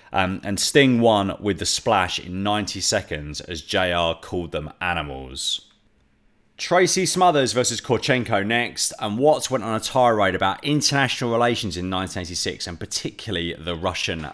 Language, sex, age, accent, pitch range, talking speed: English, male, 30-49, British, 90-120 Hz, 145 wpm